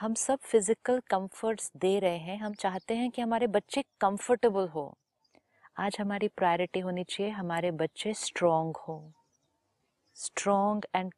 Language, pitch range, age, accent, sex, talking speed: Hindi, 175-215 Hz, 30-49, native, female, 140 wpm